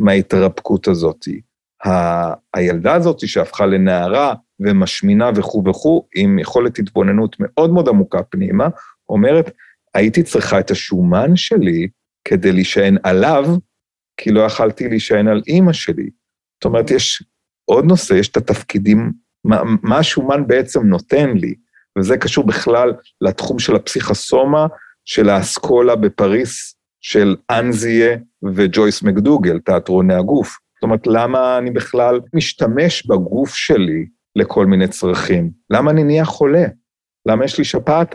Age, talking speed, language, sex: 40-59, 125 wpm, Hebrew, male